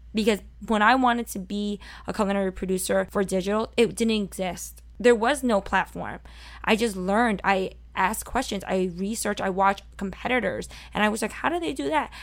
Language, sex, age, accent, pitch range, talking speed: English, female, 20-39, American, 190-235 Hz, 185 wpm